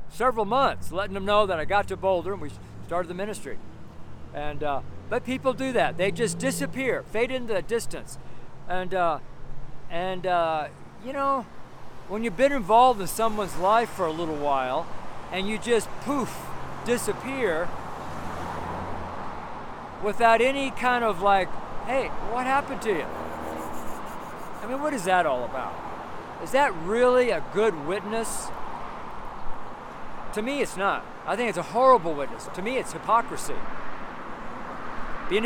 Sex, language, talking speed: male, English, 150 wpm